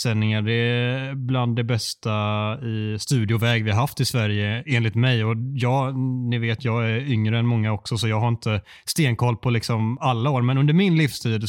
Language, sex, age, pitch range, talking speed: Swedish, male, 20-39, 115-135 Hz, 200 wpm